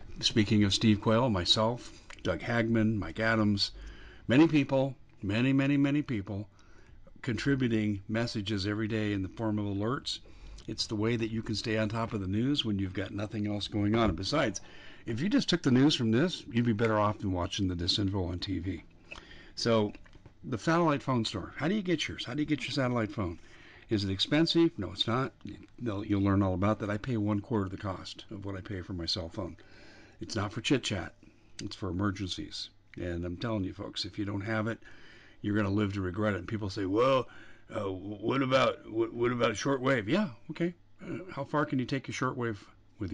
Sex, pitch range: male, 100-120 Hz